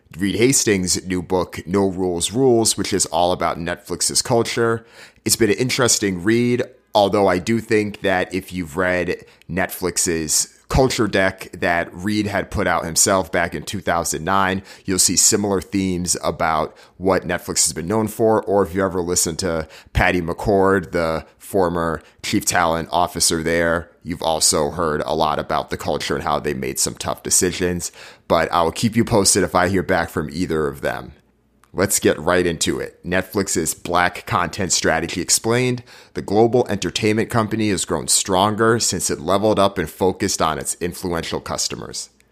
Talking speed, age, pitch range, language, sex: 165 wpm, 30-49, 90-110 Hz, English, male